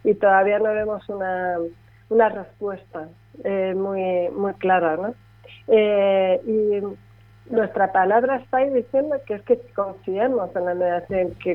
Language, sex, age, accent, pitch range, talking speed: Spanish, female, 40-59, Spanish, 175-210 Hz, 140 wpm